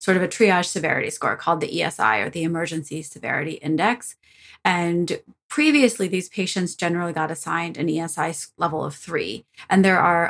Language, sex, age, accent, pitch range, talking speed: English, female, 30-49, American, 165-195 Hz, 170 wpm